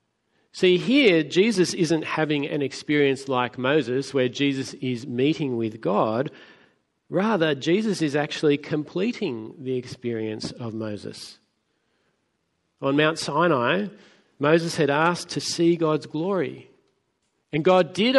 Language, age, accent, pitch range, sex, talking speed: English, 40-59, Australian, 130-155 Hz, male, 120 wpm